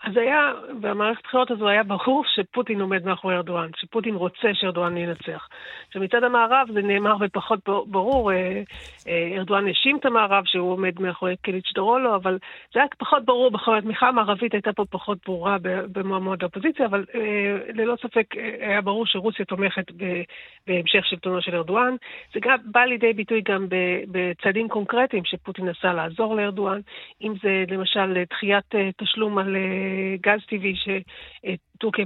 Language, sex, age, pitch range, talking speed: Hebrew, female, 50-69, 185-220 Hz, 140 wpm